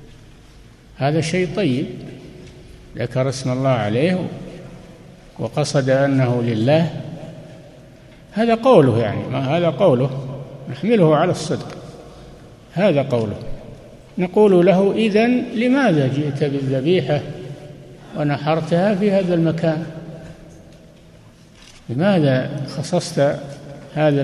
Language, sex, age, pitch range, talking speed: Arabic, male, 60-79, 130-160 Hz, 80 wpm